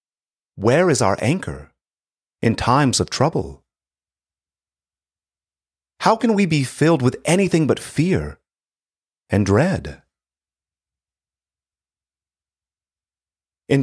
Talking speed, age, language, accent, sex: 85 wpm, 40-59, English, American, male